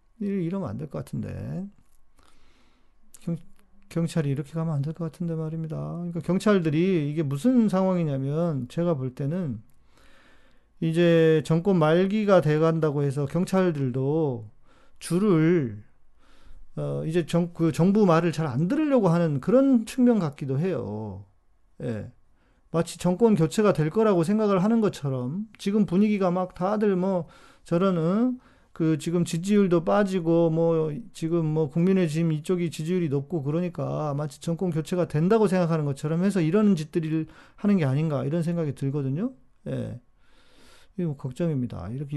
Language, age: Korean, 40-59